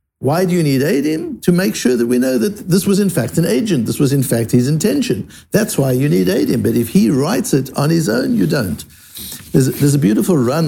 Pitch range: 120-165 Hz